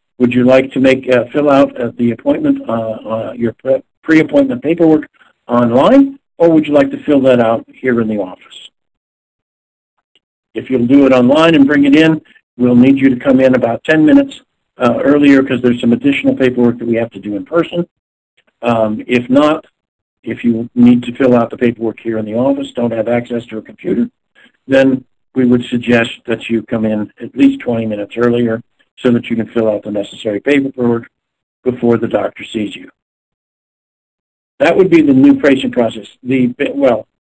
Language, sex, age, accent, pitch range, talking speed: English, male, 50-69, American, 115-145 Hz, 190 wpm